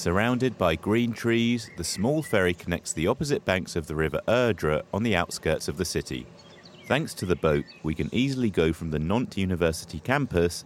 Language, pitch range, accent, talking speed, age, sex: English, 80-110 Hz, British, 190 wpm, 30-49, male